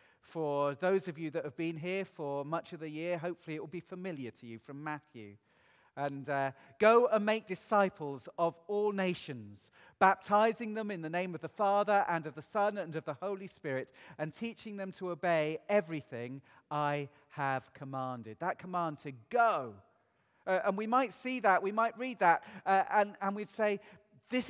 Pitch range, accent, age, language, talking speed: 145-210 Hz, British, 40-59, English, 190 wpm